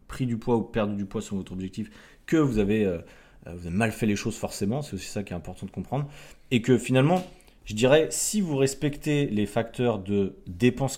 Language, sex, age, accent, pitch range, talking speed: French, male, 30-49, French, 100-125 Hz, 225 wpm